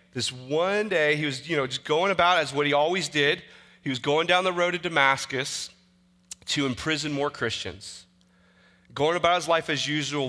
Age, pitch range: 30-49, 110-165 Hz